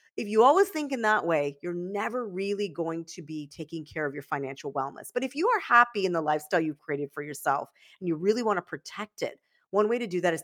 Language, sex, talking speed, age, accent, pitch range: English, female, 255 wpm, 40-59, American, 170-230 Hz